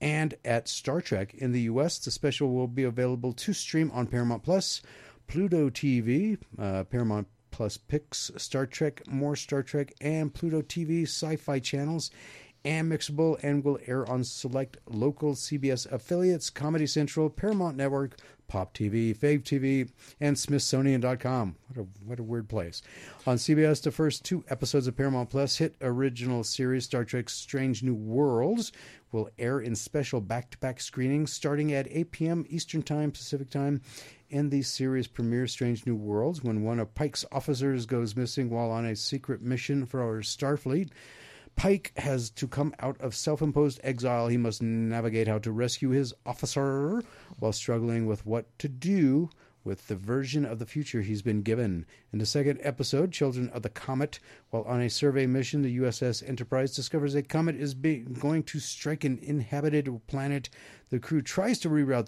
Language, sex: English, male